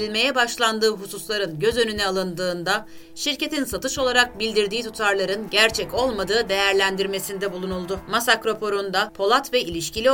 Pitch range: 190-235 Hz